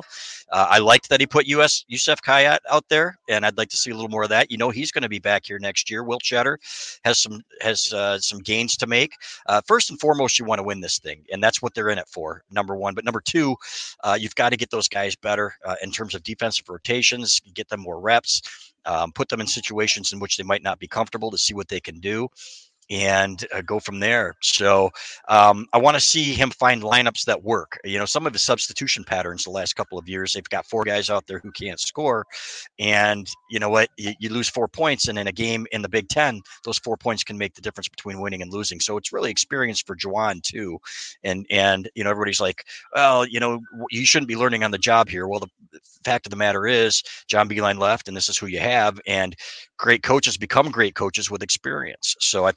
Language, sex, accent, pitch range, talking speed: English, male, American, 100-120 Hz, 240 wpm